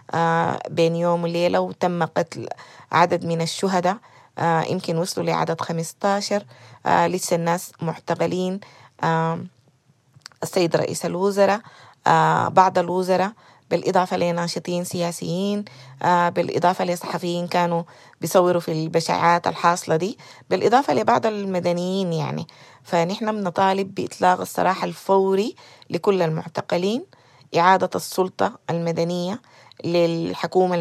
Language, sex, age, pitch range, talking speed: Arabic, female, 30-49, 165-185 Hz, 100 wpm